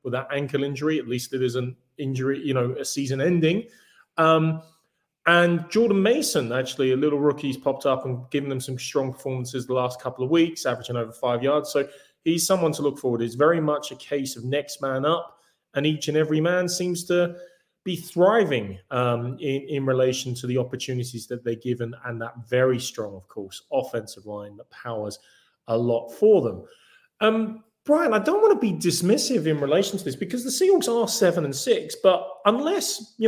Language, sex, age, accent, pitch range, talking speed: English, male, 30-49, British, 130-170 Hz, 200 wpm